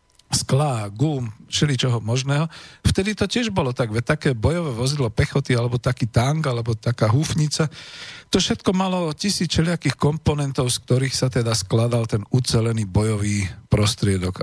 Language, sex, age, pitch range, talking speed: Slovak, male, 50-69, 110-140 Hz, 145 wpm